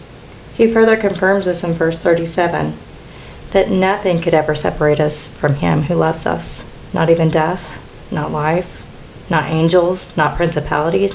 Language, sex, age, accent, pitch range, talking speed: English, female, 40-59, American, 150-190 Hz, 145 wpm